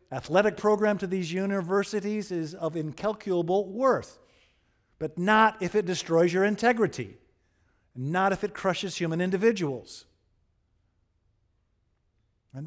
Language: English